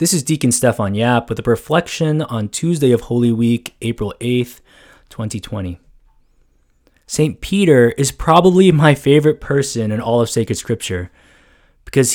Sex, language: male, English